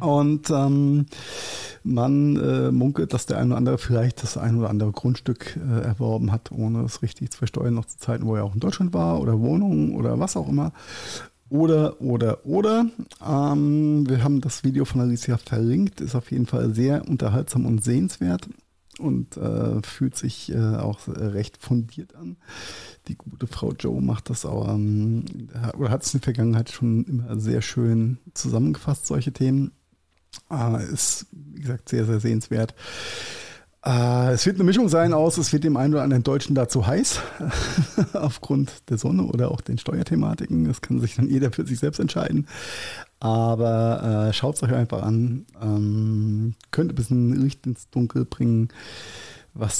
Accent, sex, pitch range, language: German, male, 110-135 Hz, German